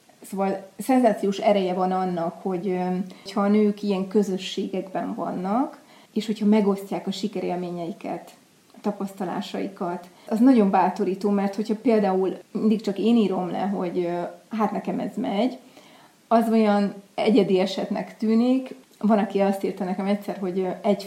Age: 30-49